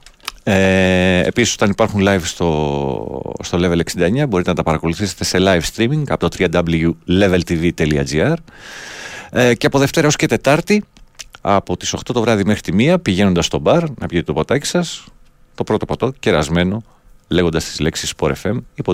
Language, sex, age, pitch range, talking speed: Greek, male, 40-59, 80-105 Hz, 165 wpm